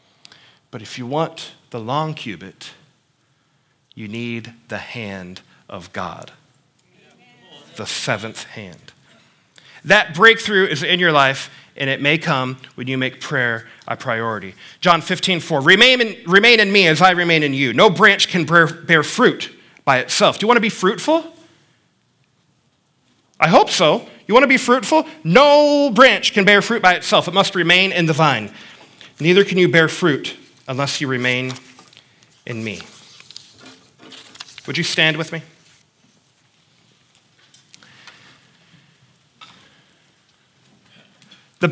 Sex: male